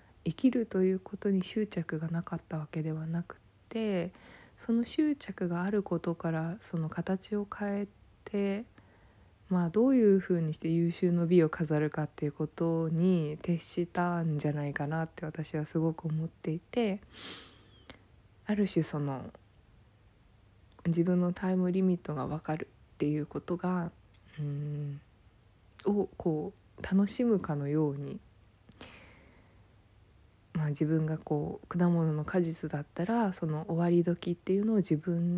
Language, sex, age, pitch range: Japanese, female, 20-39, 115-180 Hz